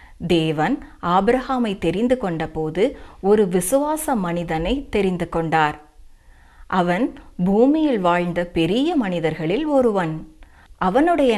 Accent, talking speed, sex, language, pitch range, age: native, 90 wpm, female, Tamil, 170-245 Hz, 30-49